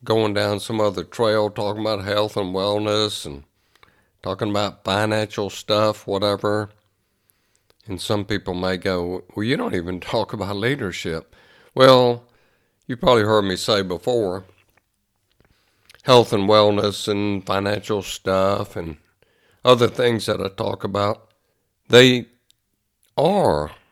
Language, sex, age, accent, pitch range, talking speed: English, male, 60-79, American, 95-105 Hz, 125 wpm